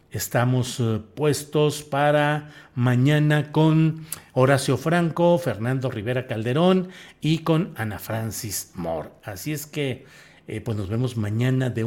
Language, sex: Spanish, male